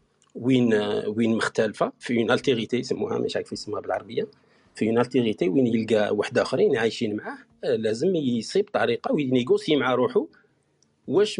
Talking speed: 130 wpm